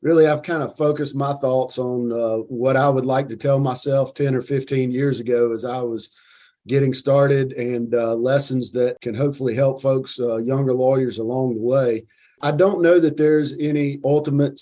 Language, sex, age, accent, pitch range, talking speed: English, male, 40-59, American, 120-145 Hz, 195 wpm